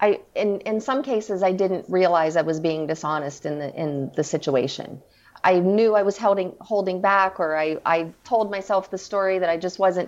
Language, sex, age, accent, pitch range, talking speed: English, female, 40-59, American, 175-205 Hz, 200 wpm